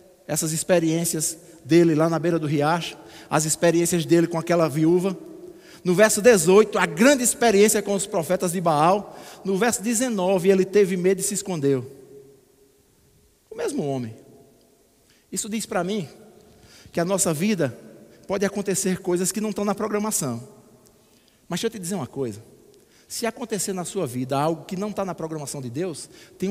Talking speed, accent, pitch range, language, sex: 165 wpm, Brazilian, 170-205 Hz, Portuguese, male